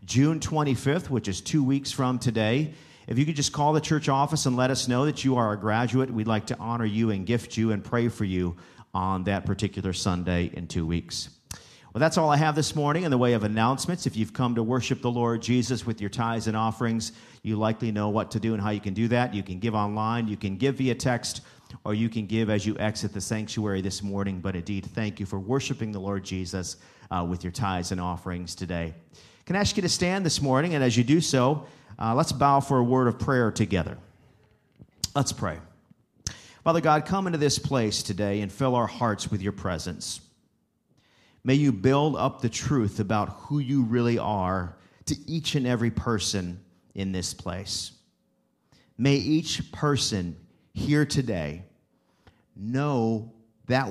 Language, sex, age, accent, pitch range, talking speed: English, male, 40-59, American, 100-135 Hz, 200 wpm